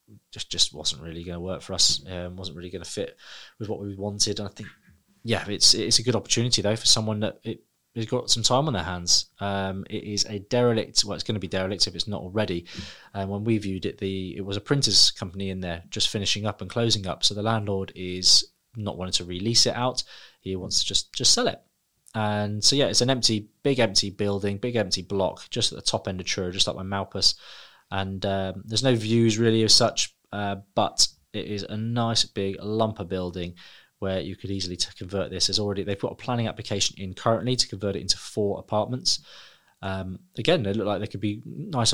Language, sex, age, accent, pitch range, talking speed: English, male, 20-39, British, 95-115 Hz, 230 wpm